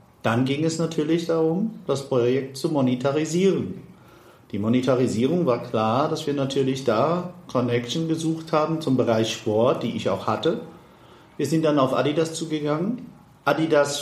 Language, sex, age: German, male, 50-69